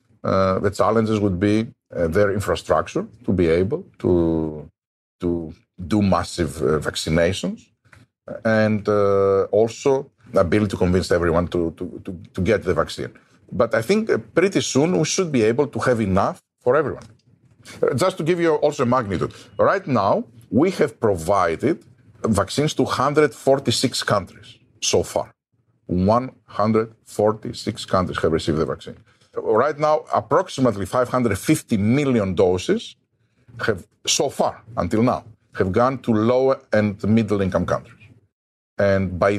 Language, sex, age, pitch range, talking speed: English, male, 50-69, 95-125 Hz, 135 wpm